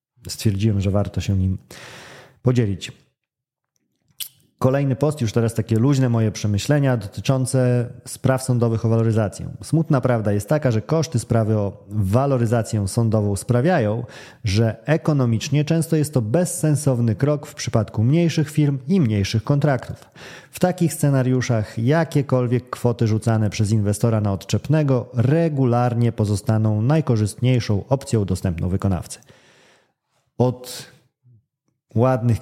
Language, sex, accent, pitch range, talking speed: Polish, male, native, 110-135 Hz, 115 wpm